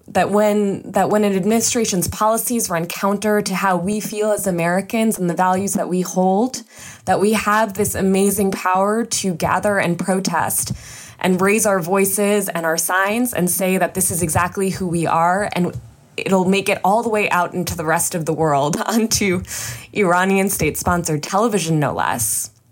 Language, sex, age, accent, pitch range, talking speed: English, female, 20-39, American, 170-205 Hz, 175 wpm